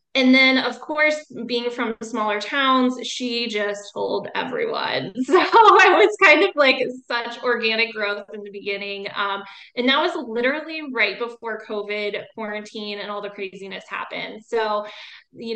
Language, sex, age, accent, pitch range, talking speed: English, female, 20-39, American, 205-235 Hz, 155 wpm